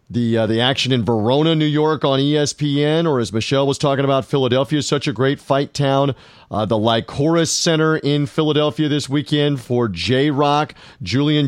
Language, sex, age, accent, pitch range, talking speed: English, male, 40-59, American, 130-165 Hz, 180 wpm